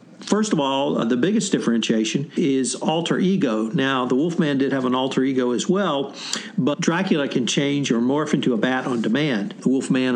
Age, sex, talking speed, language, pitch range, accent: 60-79, male, 190 wpm, English, 130-170 Hz, American